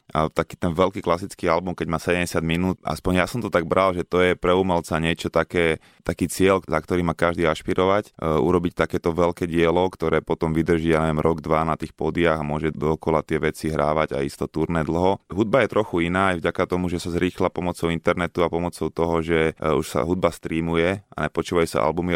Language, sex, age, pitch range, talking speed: Slovak, male, 20-39, 80-90 Hz, 210 wpm